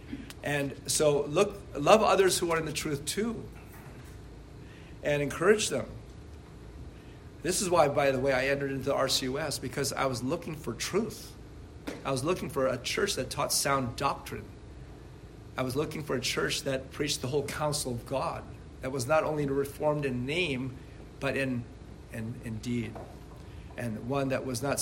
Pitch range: 125-145 Hz